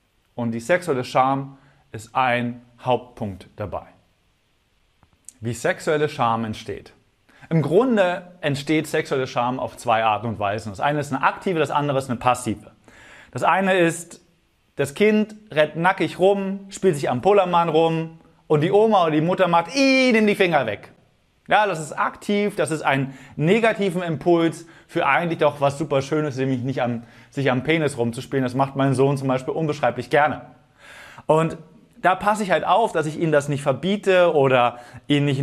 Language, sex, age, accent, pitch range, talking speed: German, male, 30-49, German, 130-170 Hz, 170 wpm